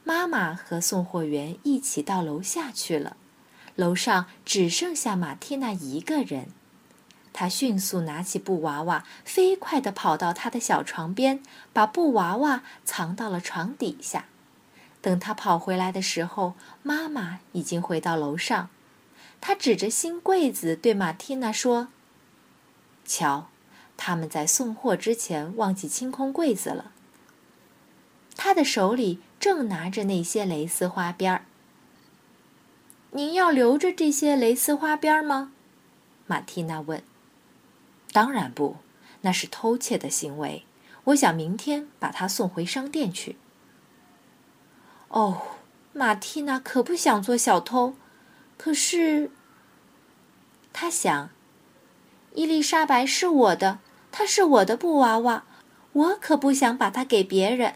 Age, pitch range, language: 20-39, 180-285 Hz, Chinese